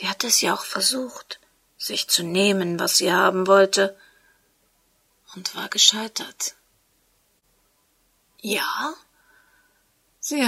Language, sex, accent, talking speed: German, female, German, 105 wpm